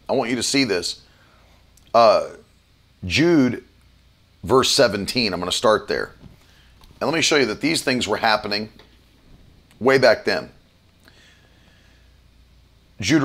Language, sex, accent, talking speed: English, male, American, 130 wpm